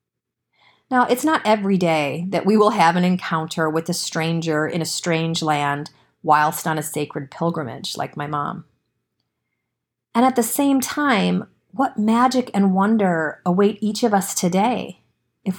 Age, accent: 40-59, American